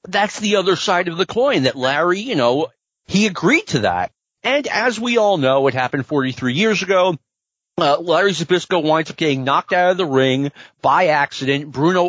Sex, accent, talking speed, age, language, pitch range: male, American, 195 wpm, 40-59, English, 135-170 Hz